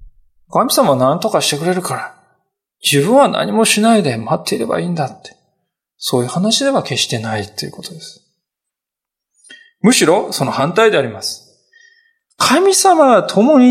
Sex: male